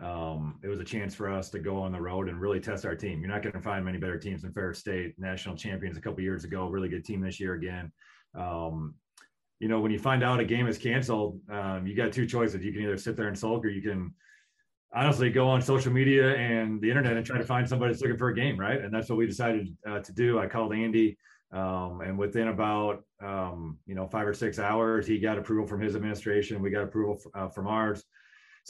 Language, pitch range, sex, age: English, 100-115 Hz, male, 30-49